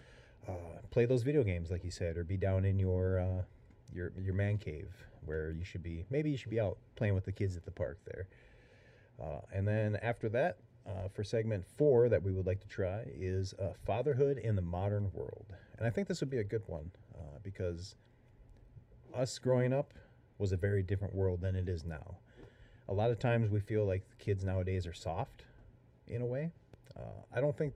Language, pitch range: English, 95-120 Hz